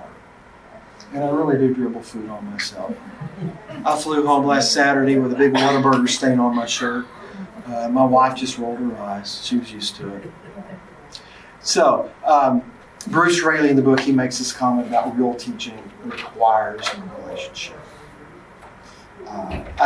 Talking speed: 155 wpm